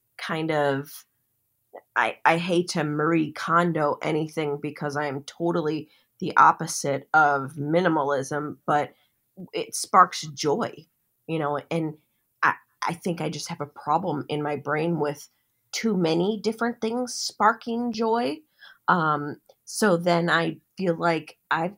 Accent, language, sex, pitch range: American, English, female, 145-170 Hz